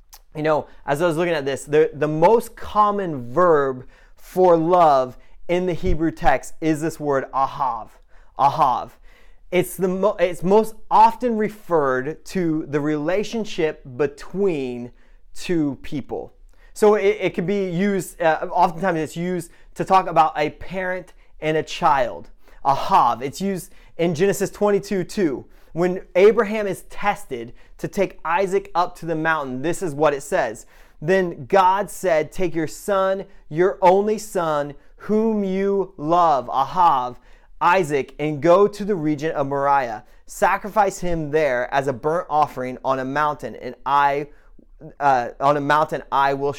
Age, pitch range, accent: 30-49, 150-195 Hz, American